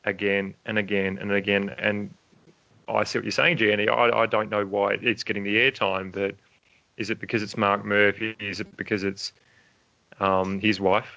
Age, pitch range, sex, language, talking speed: 30-49, 100-115 Hz, male, English, 190 wpm